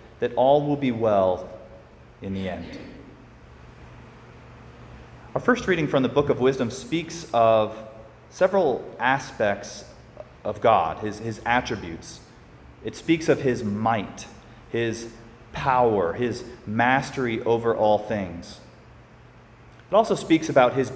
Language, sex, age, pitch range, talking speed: English, male, 30-49, 105-125 Hz, 120 wpm